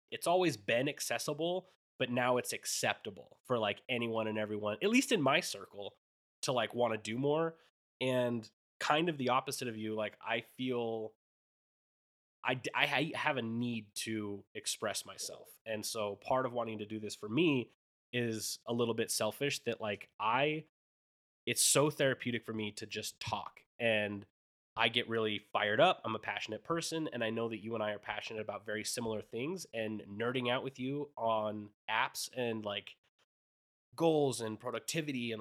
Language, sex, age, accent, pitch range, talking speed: English, male, 20-39, American, 110-130 Hz, 175 wpm